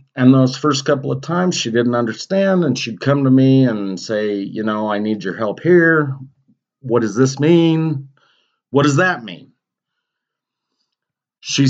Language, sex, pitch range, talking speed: English, male, 105-135 Hz, 165 wpm